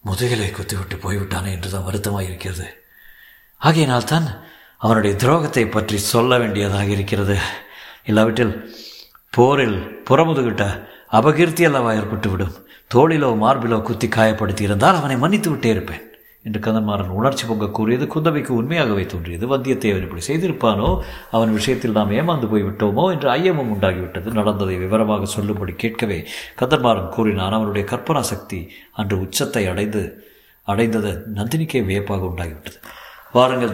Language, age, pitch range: Tamil, 60-79, 100-135 Hz